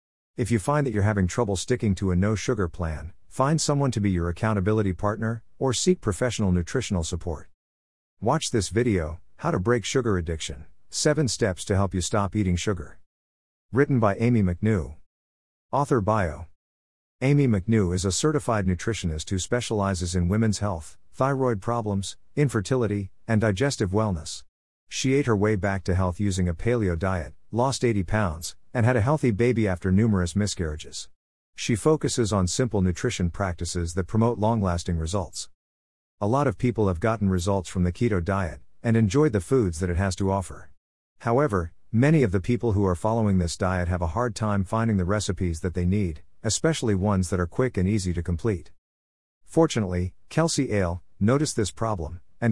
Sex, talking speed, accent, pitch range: male, 175 wpm, American, 90-115 Hz